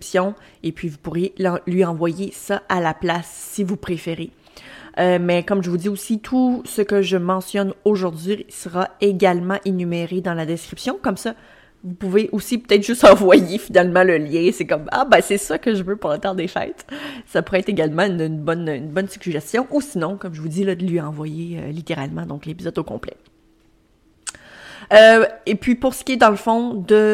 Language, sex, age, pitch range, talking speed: French, female, 30-49, 170-205 Hz, 205 wpm